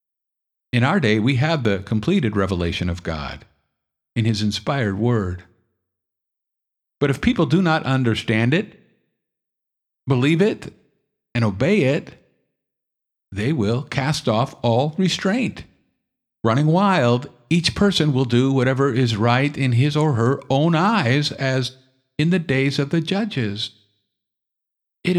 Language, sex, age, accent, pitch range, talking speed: English, male, 50-69, American, 110-150 Hz, 130 wpm